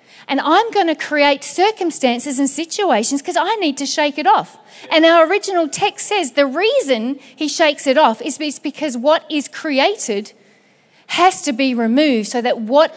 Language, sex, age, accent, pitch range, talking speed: English, female, 40-59, Australian, 235-320 Hz, 175 wpm